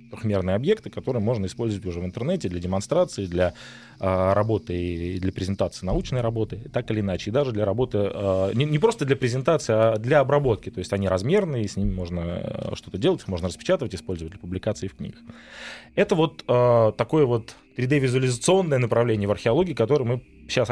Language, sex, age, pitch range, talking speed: Russian, male, 20-39, 100-135 Hz, 170 wpm